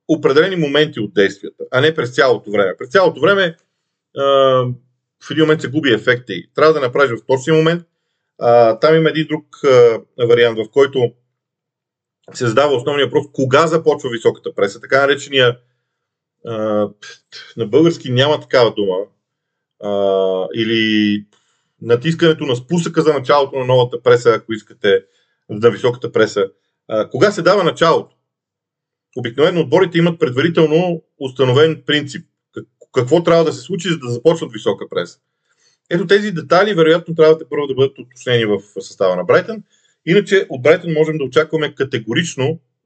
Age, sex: 40-59, male